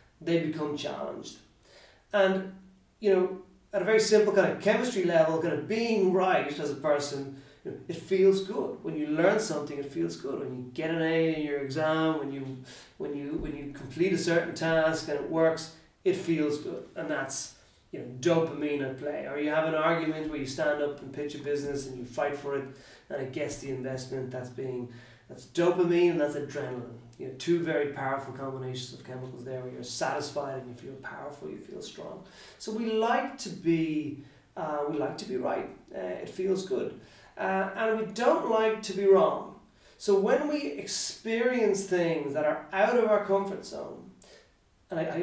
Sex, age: male, 30-49